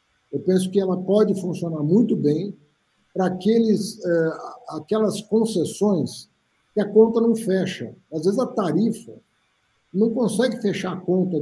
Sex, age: male, 50-69